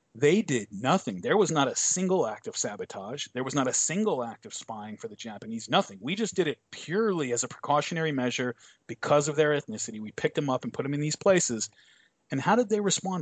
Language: English